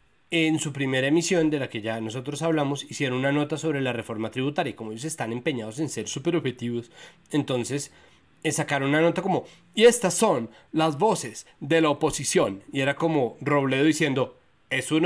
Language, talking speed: Spanish, 175 wpm